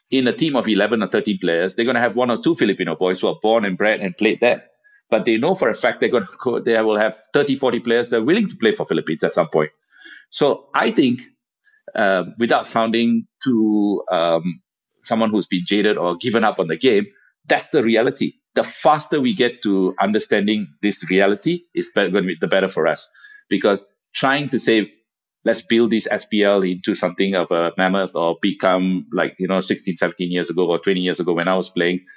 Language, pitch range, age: English, 95-135 Hz, 50-69